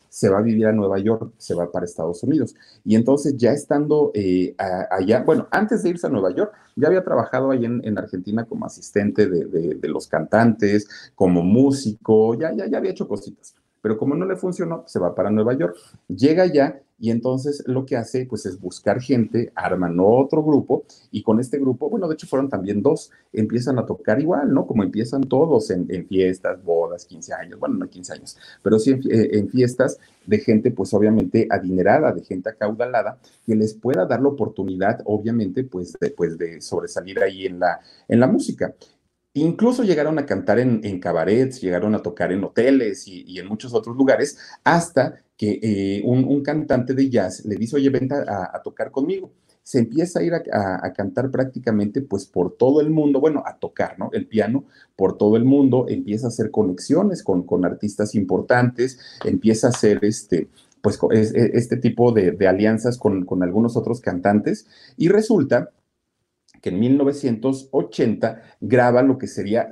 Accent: Mexican